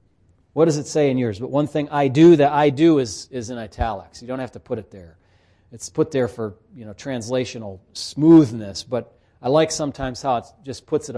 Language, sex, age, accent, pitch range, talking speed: English, male, 40-59, American, 105-160 Hz, 225 wpm